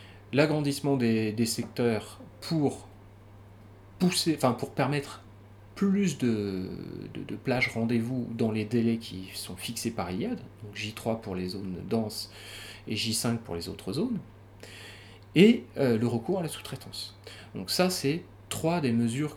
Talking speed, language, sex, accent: 140 wpm, French, male, French